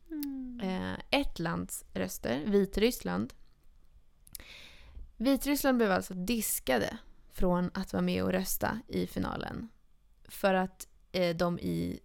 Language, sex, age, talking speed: Swedish, female, 20-39, 100 wpm